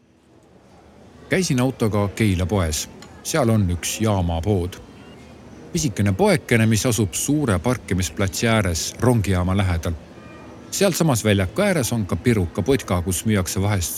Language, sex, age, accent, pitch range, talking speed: Czech, male, 50-69, Finnish, 95-115 Hz, 125 wpm